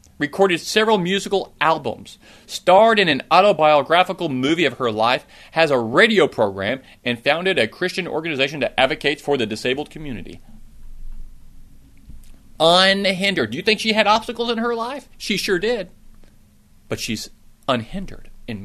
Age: 40-59